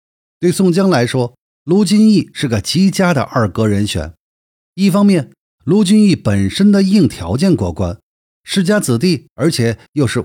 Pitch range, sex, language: 115-180 Hz, male, Chinese